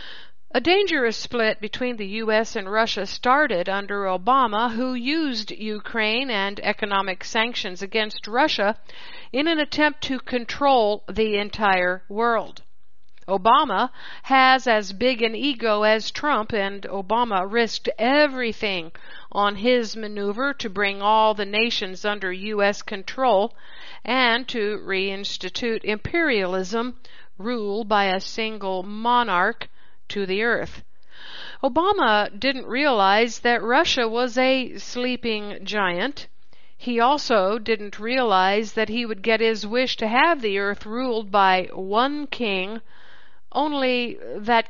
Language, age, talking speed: English, 50-69, 120 wpm